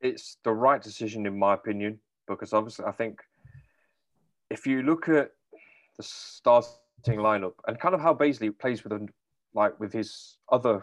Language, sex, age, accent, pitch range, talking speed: English, male, 20-39, British, 100-120 Hz, 165 wpm